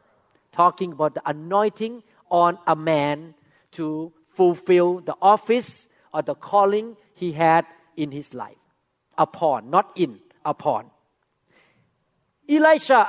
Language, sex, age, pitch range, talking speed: English, male, 50-69, 155-195 Hz, 110 wpm